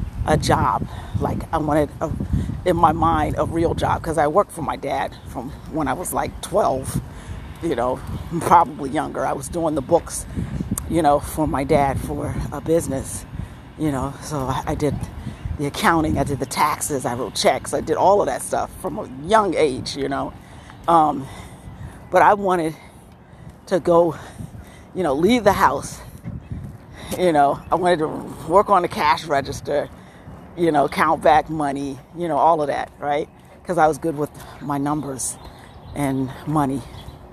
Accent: American